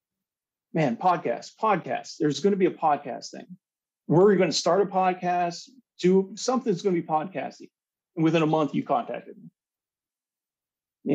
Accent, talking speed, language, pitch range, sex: American, 150 wpm, English, 140-180 Hz, male